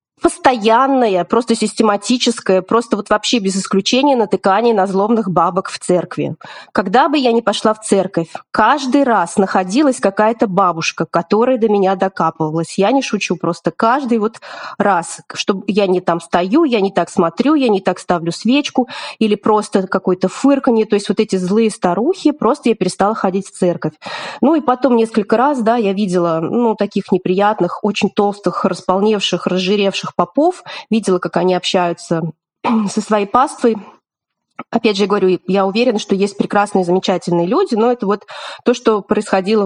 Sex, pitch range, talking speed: female, 185-230 Hz, 160 wpm